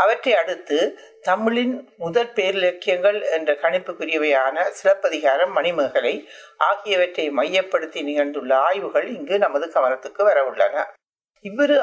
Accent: native